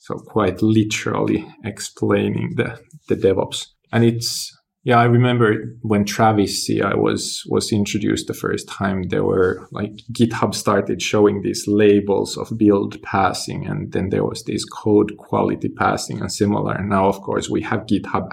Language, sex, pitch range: English, male, 100-115 Hz